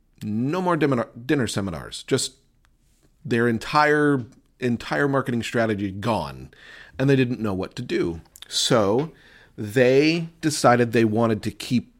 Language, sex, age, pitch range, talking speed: English, male, 40-59, 115-140 Hz, 125 wpm